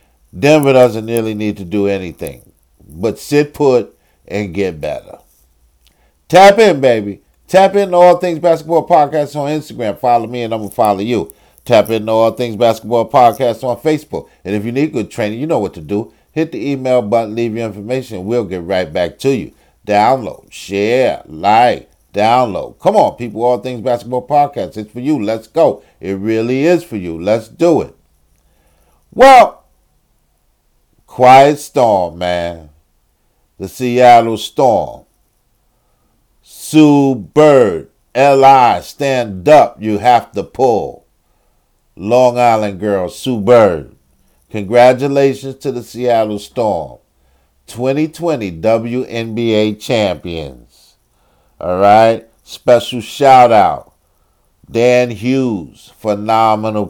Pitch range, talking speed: 95-130 Hz, 135 wpm